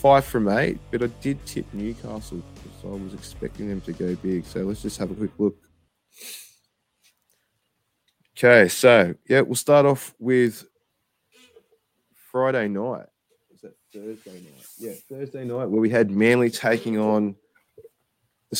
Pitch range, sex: 105-130 Hz, male